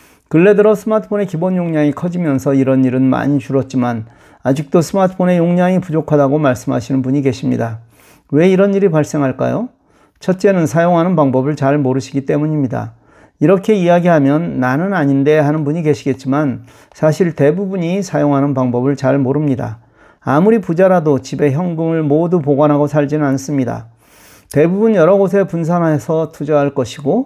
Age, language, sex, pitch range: 40-59, Korean, male, 135-175 Hz